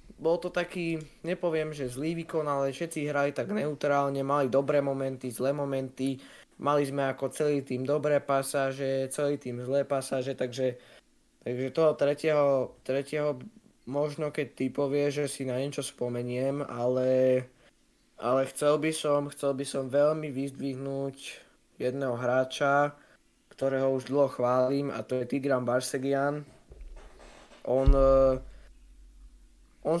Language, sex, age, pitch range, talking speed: Slovak, male, 20-39, 130-145 Hz, 130 wpm